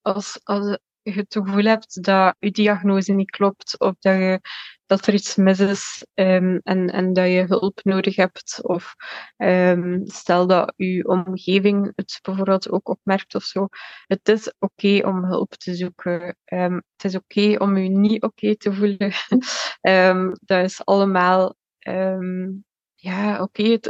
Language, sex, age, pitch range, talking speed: Dutch, female, 20-39, 185-205 Hz, 170 wpm